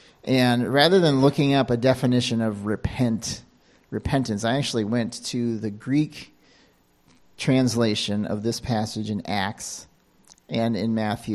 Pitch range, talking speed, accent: 115-135 Hz, 130 wpm, American